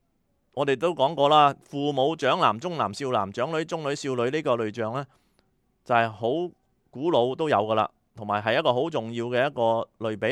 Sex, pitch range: male, 115-155 Hz